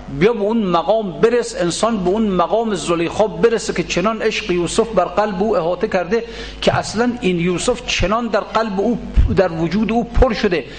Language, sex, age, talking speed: Persian, male, 60-79, 185 wpm